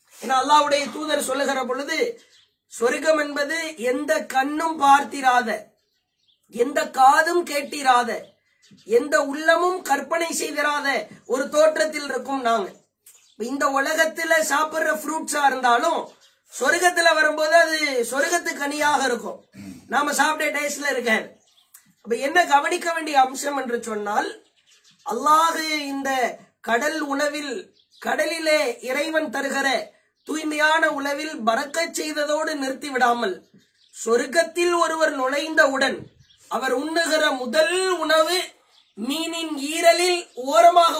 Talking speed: 90 wpm